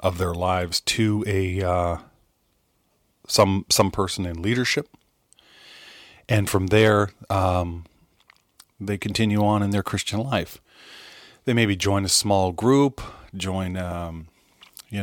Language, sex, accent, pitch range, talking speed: English, male, American, 95-110 Hz, 125 wpm